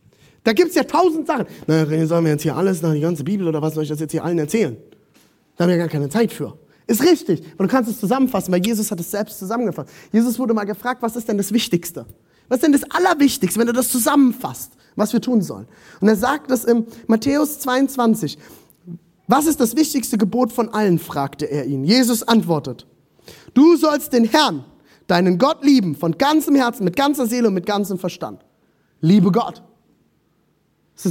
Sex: male